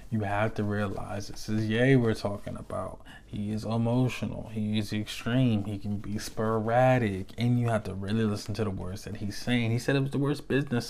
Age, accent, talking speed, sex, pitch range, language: 20-39, American, 215 wpm, male, 110-130 Hz, English